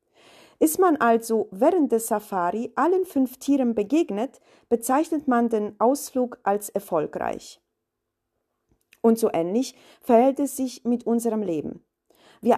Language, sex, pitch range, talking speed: German, female, 210-270 Hz, 125 wpm